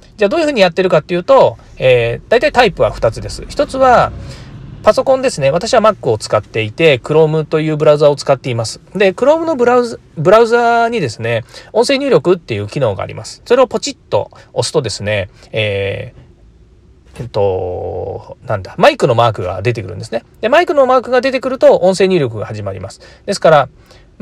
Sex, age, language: male, 40-59, Japanese